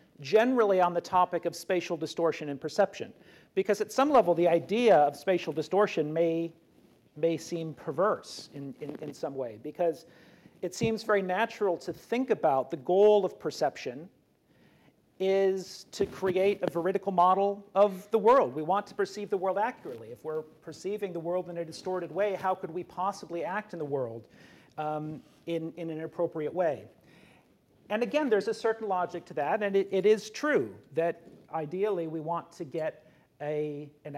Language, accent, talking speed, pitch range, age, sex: English, American, 170 wpm, 155-195 Hz, 40-59, male